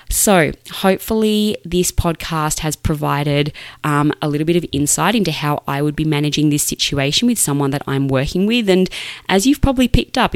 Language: English